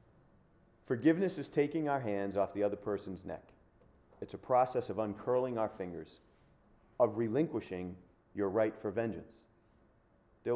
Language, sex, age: English, male, 40-59